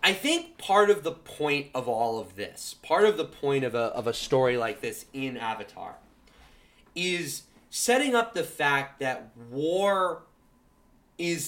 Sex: male